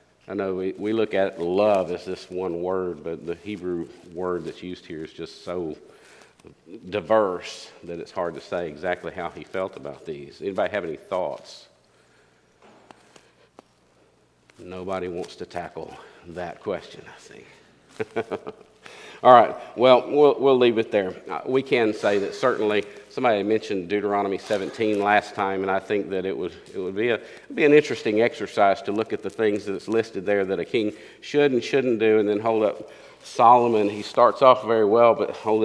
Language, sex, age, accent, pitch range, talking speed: English, male, 50-69, American, 95-125 Hz, 175 wpm